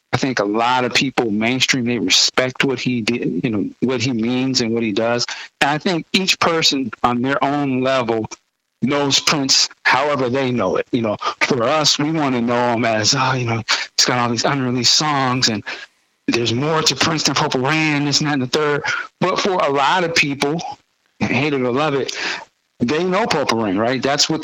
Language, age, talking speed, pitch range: English, 60-79, 215 wpm, 115-145 Hz